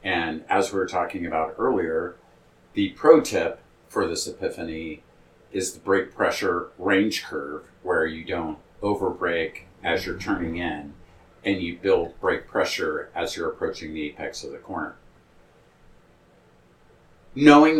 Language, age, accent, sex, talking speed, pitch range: English, 50-69, American, male, 140 wpm, 80-125 Hz